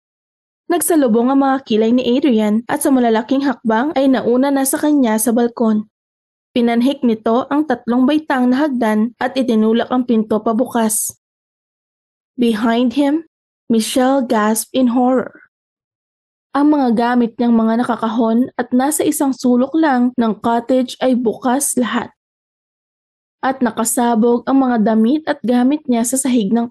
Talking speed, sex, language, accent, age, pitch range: 140 wpm, female, Filipino, native, 20-39, 230-265 Hz